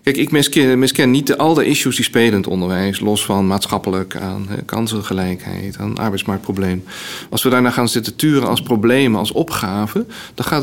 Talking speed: 185 wpm